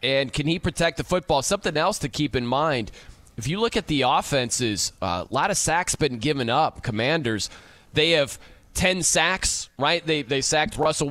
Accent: American